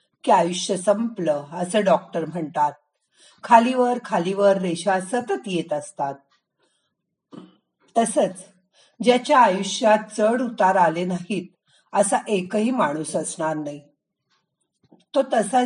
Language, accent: Marathi, native